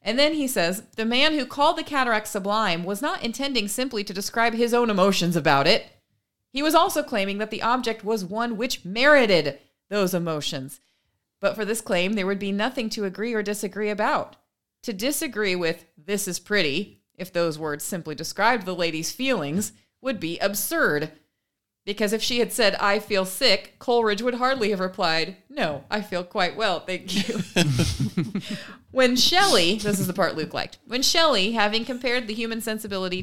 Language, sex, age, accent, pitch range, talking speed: English, female, 30-49, American, 165-230 Hz, 180 wpm